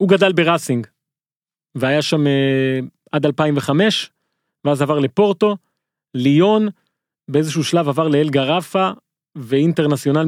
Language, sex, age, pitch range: Hebrew, male, 30-49, 145-180 Hz